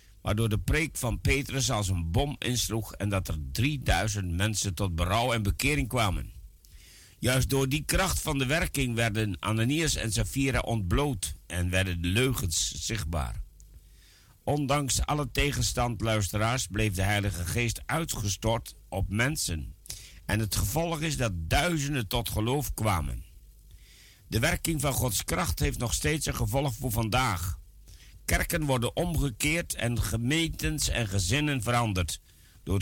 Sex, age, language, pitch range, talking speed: male, 60-79, Dutch, 90-130 Hz, 140 wpm